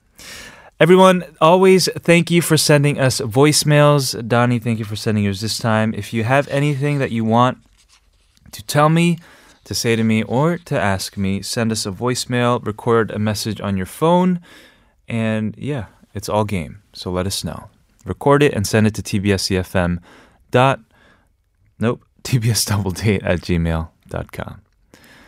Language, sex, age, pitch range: Korean, male, 20-39, 100-140 Hz